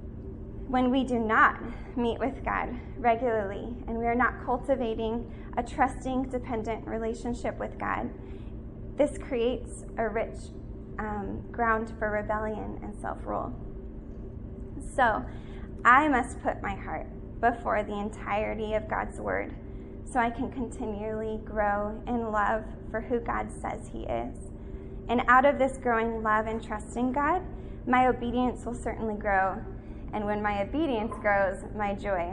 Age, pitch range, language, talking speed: 20-39, 215-255 Hz, English, 140 wpm